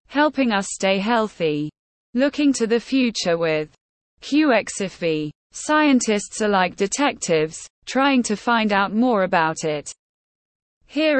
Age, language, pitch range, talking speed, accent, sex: 20-39, English, 180-255 Hz, 120 wpm, British, female